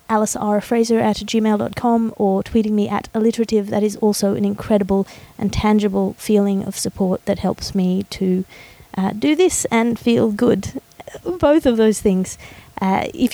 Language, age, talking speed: English, 30-49, 160 wpm